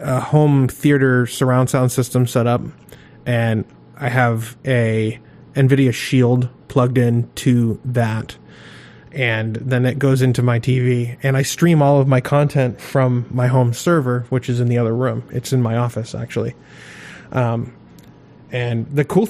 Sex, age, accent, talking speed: male, 20-39, American, 160 wpm